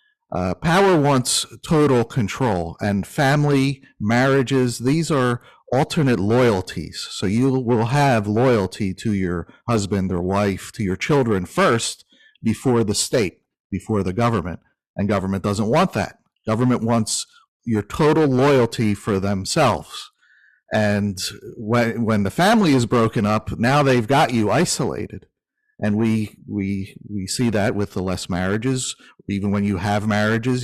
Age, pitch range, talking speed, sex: 50-69, 105-135 Hz, 140 wpm, male